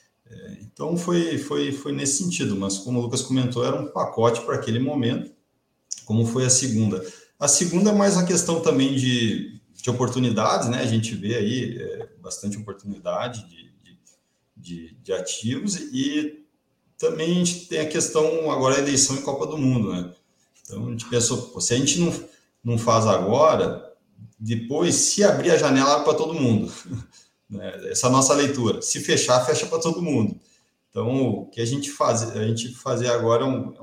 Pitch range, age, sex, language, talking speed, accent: 115-150 Hz, 40-59, male, Portuguese, 180 wpm, Brazilian